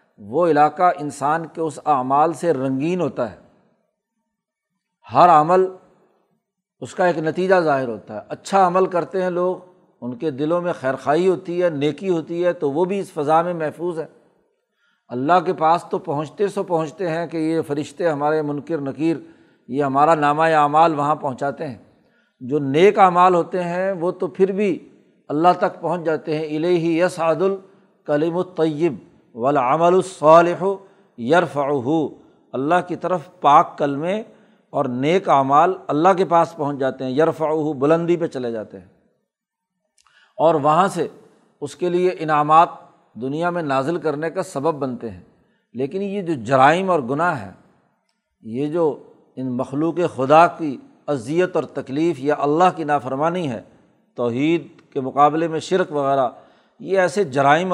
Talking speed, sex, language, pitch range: 155 wpm, male, Urdu, 145-185 Hz